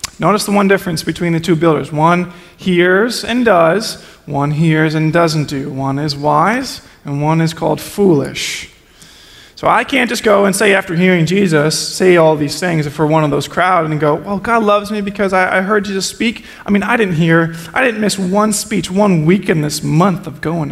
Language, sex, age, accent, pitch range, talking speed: English, male, 20-39, American, 160-210 Hz, 215 wpm